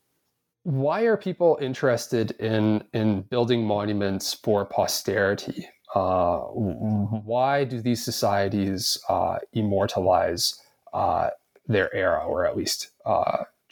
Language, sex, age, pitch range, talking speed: English, male, 30-49, 105-135 Hz, 105 wpm